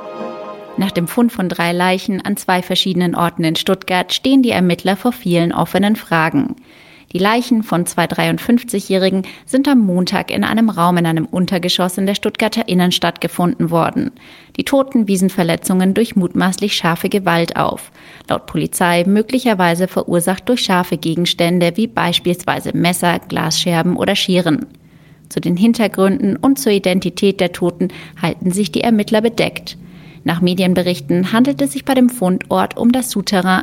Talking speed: 150 wpm